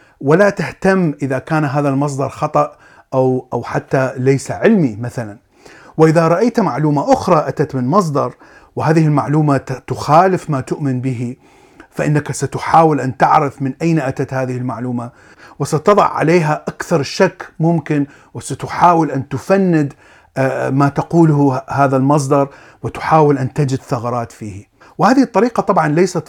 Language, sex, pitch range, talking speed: Arabic, male, 130-165 Hz, 125 wpm